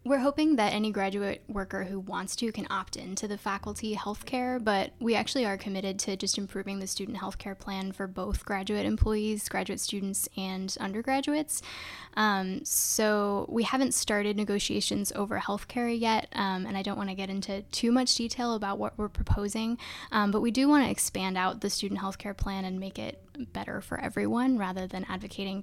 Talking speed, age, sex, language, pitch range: 185 wpm, 10-29, female, English, 195-230 Hz